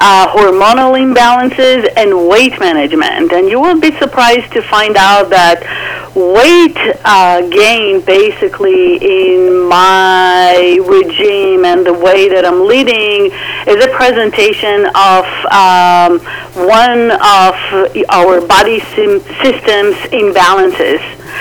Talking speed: 110 wpm